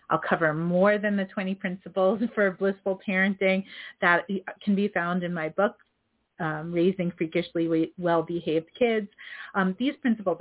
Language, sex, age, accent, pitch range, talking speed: English, female, 40-59, American, 165-215 Hz, 145 wpm